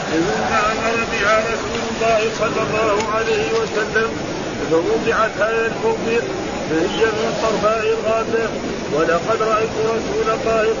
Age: 50-69